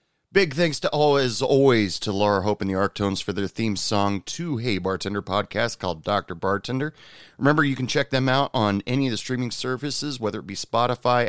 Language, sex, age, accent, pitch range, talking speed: English, male, 30-49, American, 105-150 Hz, 205 wpm